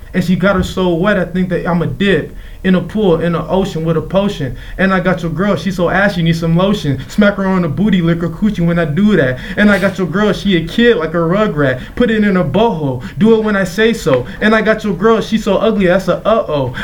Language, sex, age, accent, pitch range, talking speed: English, male, 20-39, American, 175-210 Hz, 280 wpm